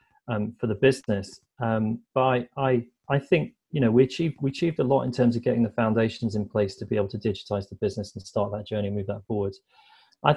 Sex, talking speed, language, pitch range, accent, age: male, 245 wpm, English, 105-120 Hz, British, 30-49